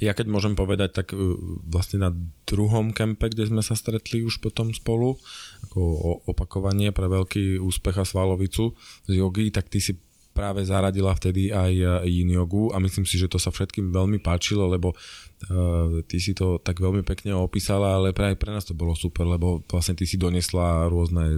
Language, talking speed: Slovak, 180 wpm